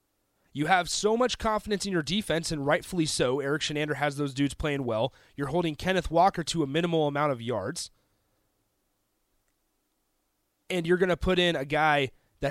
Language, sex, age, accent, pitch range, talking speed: English, male, 30-49, American, 135-195 Hz, 175 wpm